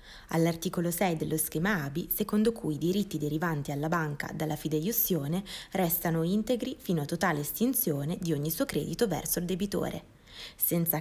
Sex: female